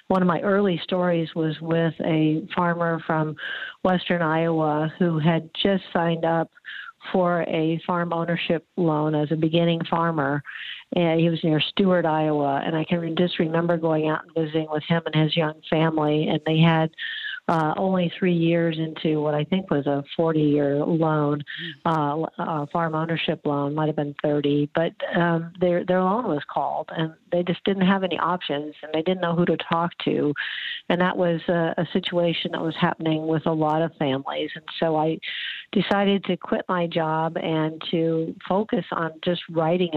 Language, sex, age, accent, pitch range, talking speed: English, female, 50-69, American, 160-175 Hz, 180 wpm